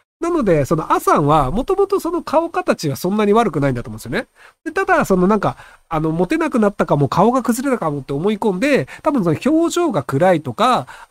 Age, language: 40-59, Japanese